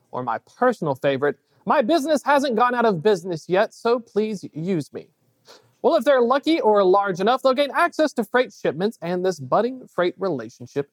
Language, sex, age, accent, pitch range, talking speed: English, male, 40-59, American, 180-260 Hz, 185 wpm